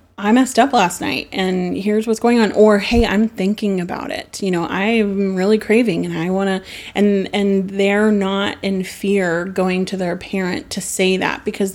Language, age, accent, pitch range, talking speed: English, 30-49, American, 180-210 Hz, 200 wpm